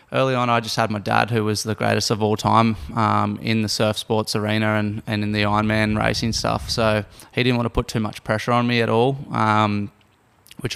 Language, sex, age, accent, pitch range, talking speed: English, male, 20-39, Australian, 110-115 Hz, 240 wpm